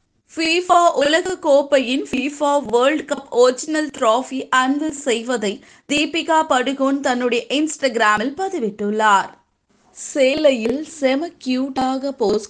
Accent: native